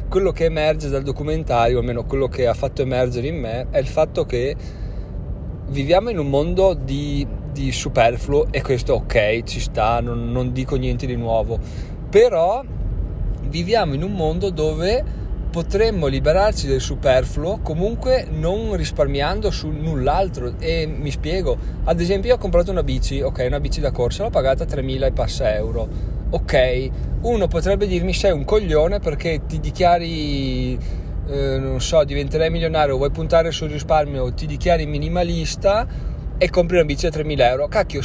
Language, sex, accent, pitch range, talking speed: Italian, male, native, 130-160 Hz, 160 wpm